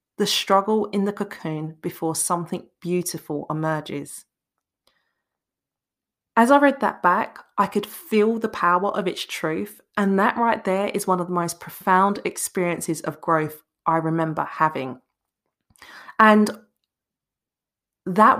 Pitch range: 170-220 Hz